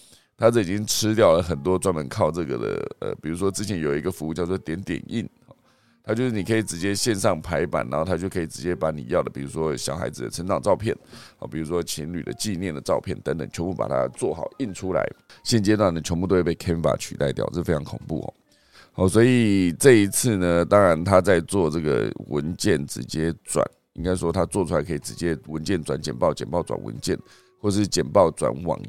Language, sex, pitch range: Chinese, male, 80-105 Hz